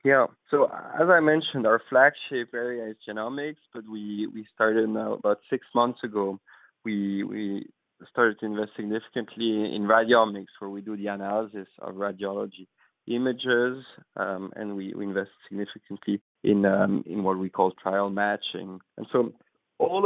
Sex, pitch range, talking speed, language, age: male, 105-130 Hz, 155 wpm, English, 20-39